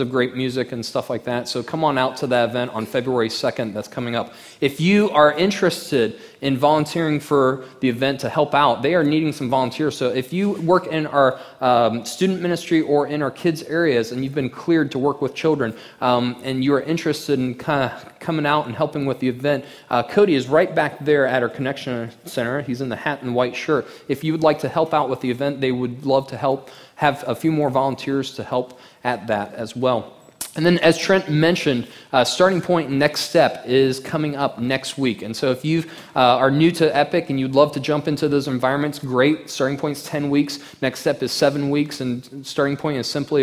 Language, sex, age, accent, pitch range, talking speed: English, male, 20-39, American, 125-150 Hz, 225 wpm